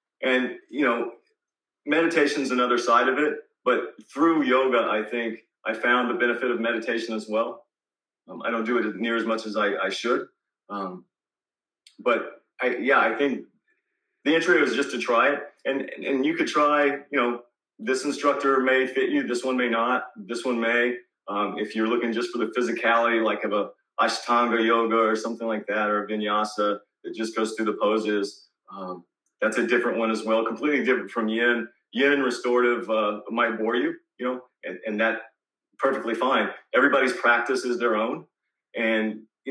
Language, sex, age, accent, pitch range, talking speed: English, male, 30-49, American, 110-130 Hz, 185 wpm